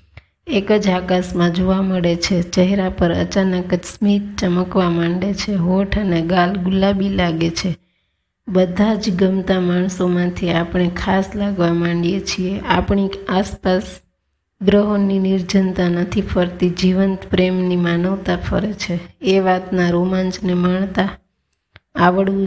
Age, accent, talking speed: 20-39, native, 100 wpm